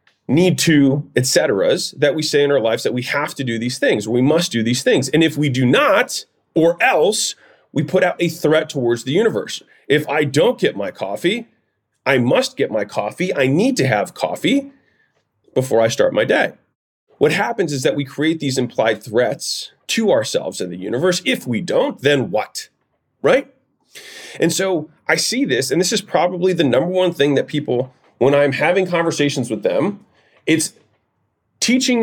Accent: American